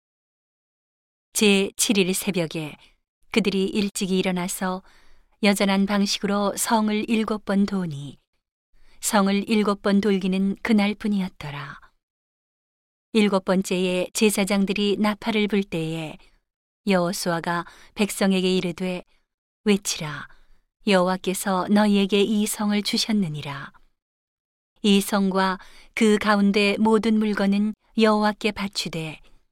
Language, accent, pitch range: Korean, native, 180-210 Hz